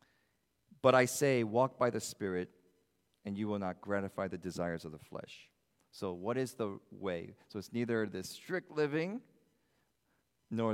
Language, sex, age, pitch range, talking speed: English, male, 40-59, 105-145 Hz, 160 wpm